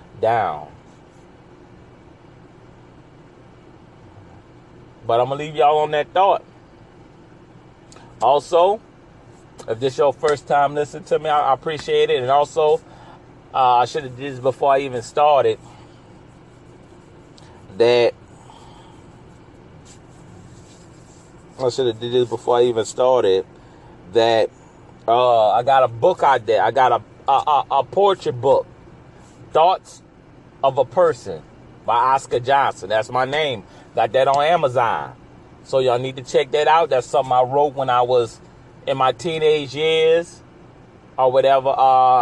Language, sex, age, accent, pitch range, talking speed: English, male, 30-49, American, 125-155 Hz, 135 wpm